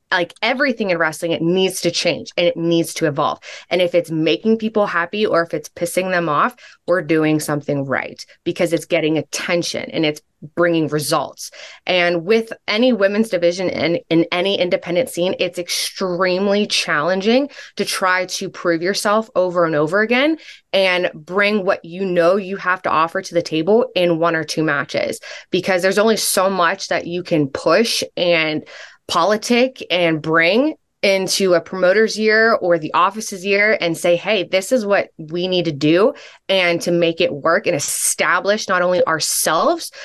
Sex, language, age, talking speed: female, English, 20-39, 175 wpm